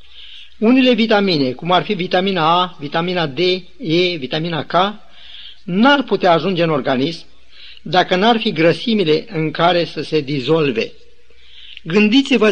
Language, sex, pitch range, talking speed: Romanian, male, 155-200 Hz, 130 wpm